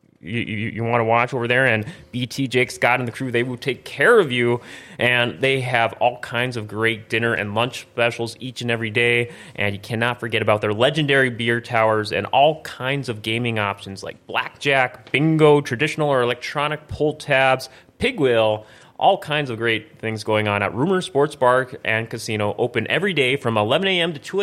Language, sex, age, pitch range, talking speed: English, male, 30-49, 105-135 Hz, 200 wpm